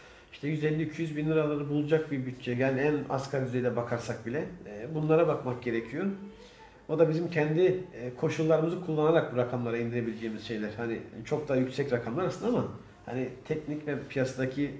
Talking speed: 155 wpm